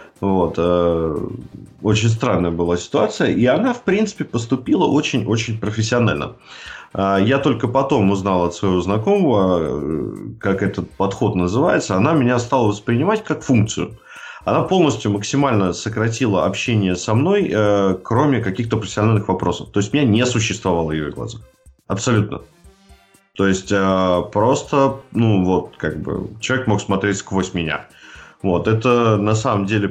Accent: native